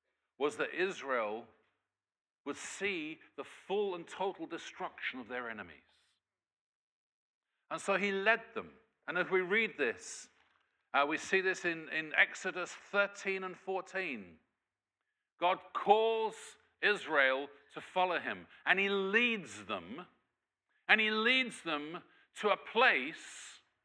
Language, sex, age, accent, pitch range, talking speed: English, male, 50-69, British, 155-205 Hz, 125 wpm